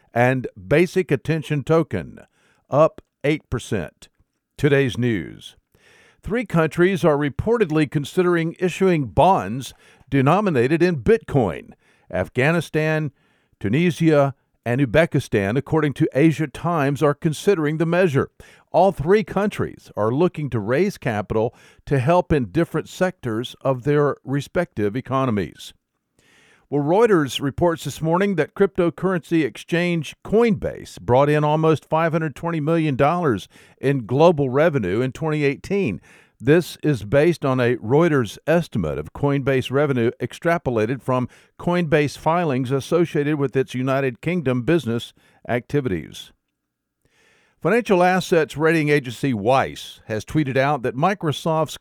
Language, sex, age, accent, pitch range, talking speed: English, male, 50-69, American, 130-170 Hz, 110 wpm